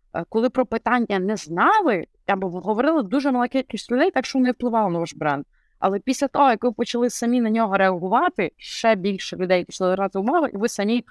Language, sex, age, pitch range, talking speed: Ukrainian, female, 20-39, 170-215 Hz, 205 wpm